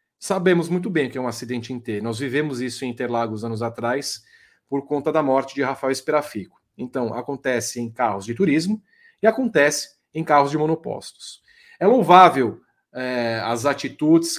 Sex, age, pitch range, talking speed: male, 40-59, 130-170 Hz, 165 wpm